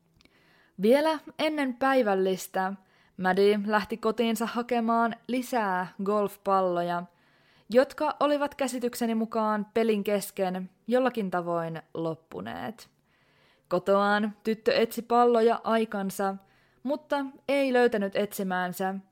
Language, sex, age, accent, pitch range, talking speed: Finnish, female, 20-39, native, 185-245 Hz, 85 wpm